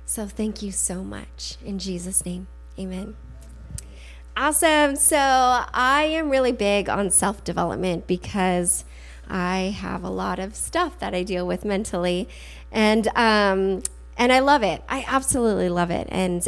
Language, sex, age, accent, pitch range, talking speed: English, female, 20-39, American, 180-225 Hz, 145 wpm